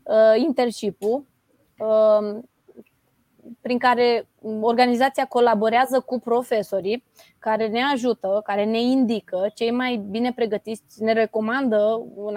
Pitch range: 215-255 Hz